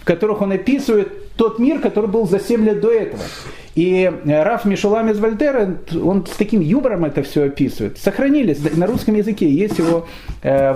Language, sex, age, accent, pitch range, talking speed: Russian, male, 40-59, native, 155-210 Hz, 180 wpm